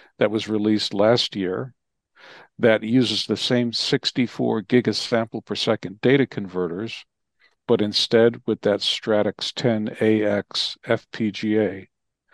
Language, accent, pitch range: English, American, 105-120 Hz